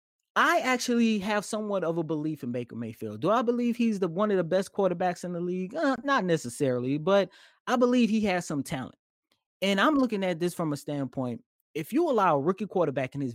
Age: 30-49